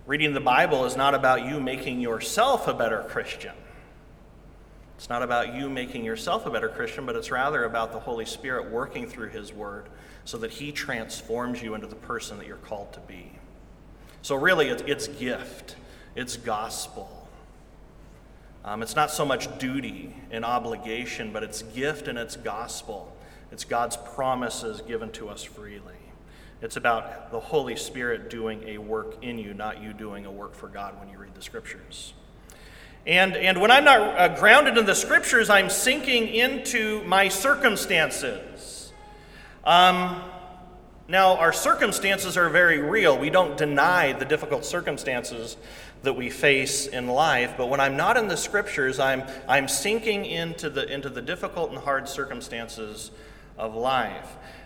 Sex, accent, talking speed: male, American, 160 wpm